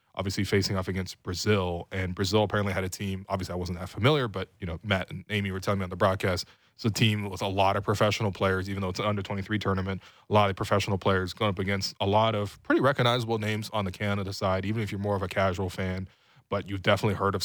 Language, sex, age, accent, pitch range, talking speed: English, male, 20-39, American, 95-110 Hz, 255 wpm